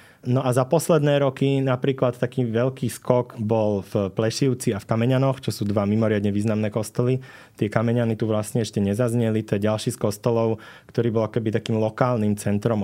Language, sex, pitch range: Slovak, male, 105-120 Hz